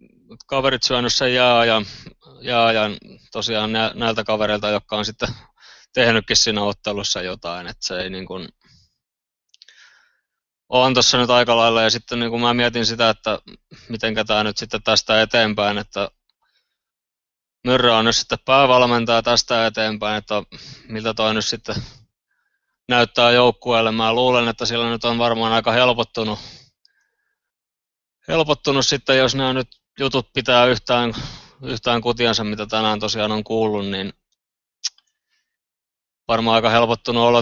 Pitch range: 105-120 Hz